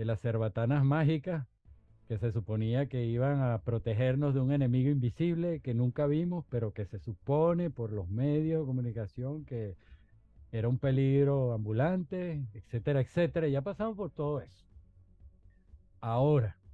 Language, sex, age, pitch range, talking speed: Spanish, male, 50-69, 105-140 Hz, 145 wpm